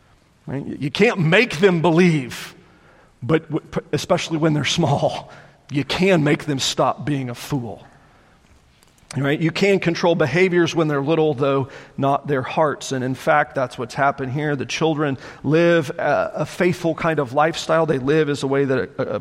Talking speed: 160 wpm